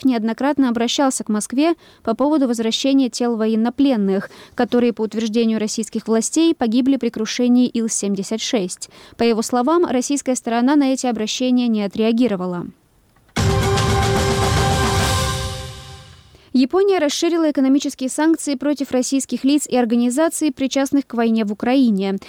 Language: Russian